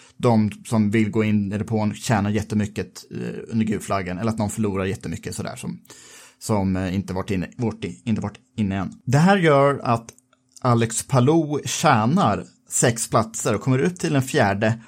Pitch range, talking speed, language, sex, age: 110-135 Hz, 165 wpm, Swedish, male, 30-49